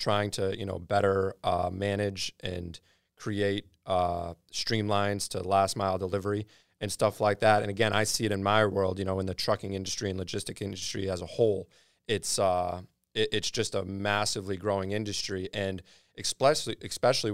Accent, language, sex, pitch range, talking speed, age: American, English, male, 95-110 Hz, 175 wpm, 30-49